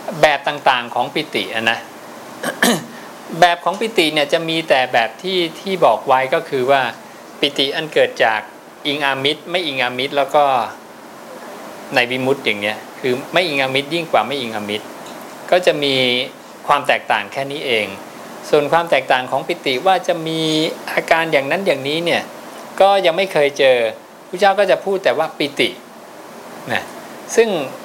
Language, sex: English, male